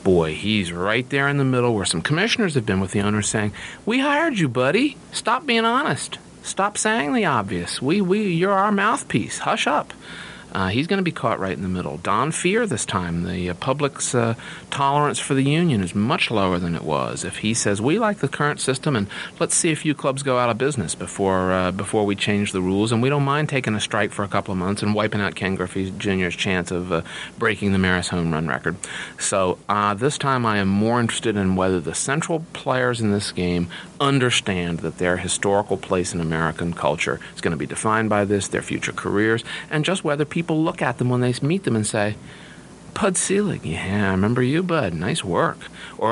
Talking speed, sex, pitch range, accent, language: 225 wpm, male, 90-135 Hz, American, English